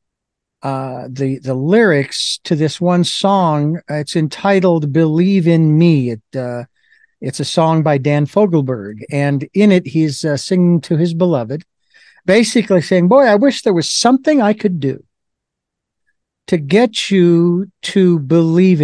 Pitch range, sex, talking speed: 150-195 Hz, male, 145 wpm